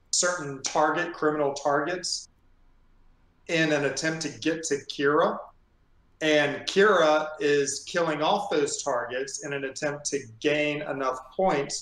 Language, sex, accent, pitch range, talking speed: English, male, American, 125-155 Hz, 125 wpm